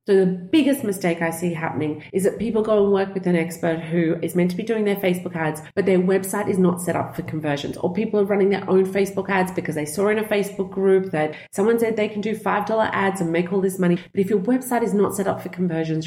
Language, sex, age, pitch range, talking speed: English, female, 30-49, 165-205 Hz, 270 wpm